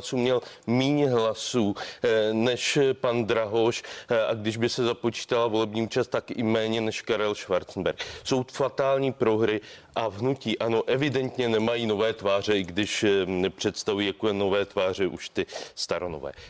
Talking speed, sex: 140 wpm, male